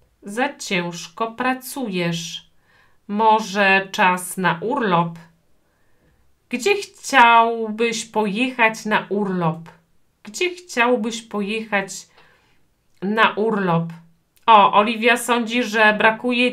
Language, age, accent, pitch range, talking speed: Polish, 40-59, native, 185-245 Hz, 80 wpm